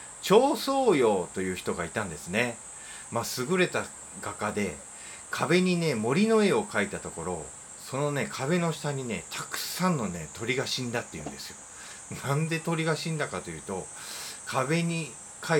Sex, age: male, 30-49